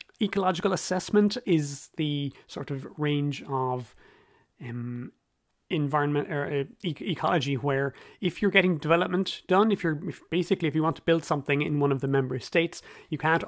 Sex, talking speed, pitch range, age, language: male, 165 wpm, 135-160 Hz, 30-49, English